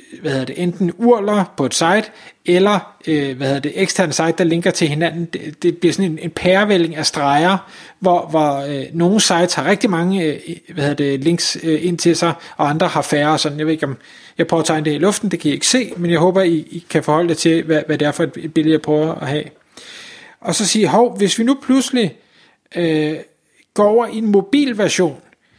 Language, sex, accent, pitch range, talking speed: Danish, male, native, 160-210 Hz, 220 wpm